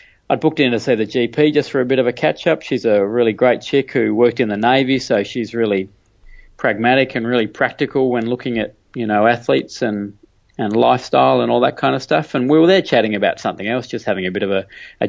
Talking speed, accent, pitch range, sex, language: 245 wpm, Australian, 105-135 Hz, male, English